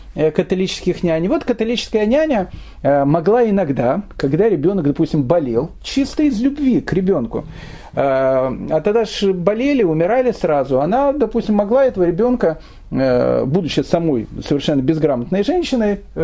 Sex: male